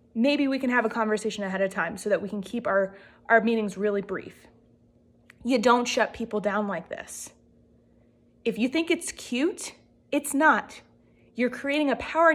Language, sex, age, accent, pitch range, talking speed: English, female, 20-39, American, 215-290 Hz, 180 wpm